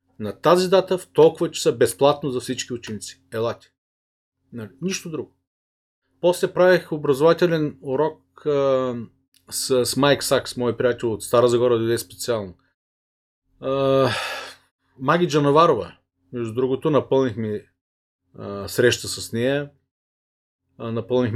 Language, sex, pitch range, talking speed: Bulgarian, male, 105-135 Hz, 125 wpm